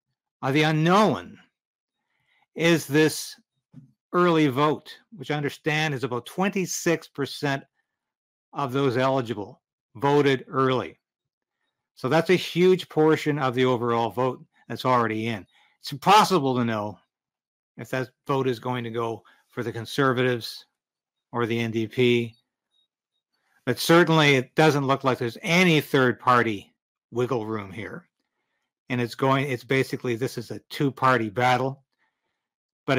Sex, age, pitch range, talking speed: male, 60-79, 120-155 Hz, 130 wpm